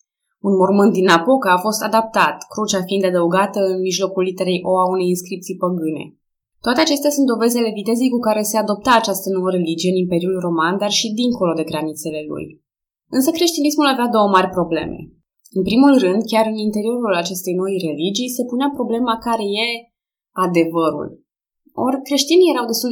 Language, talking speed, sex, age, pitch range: Romanian, 170 wpm, female, 20-39, 180-235 Hz